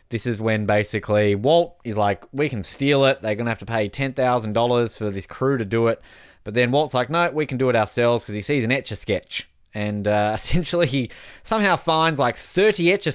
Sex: male